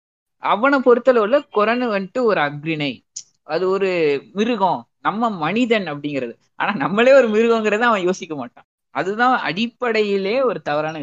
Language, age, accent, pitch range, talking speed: Tamil, 20-39, native, 165-225 Hz, 125 wpm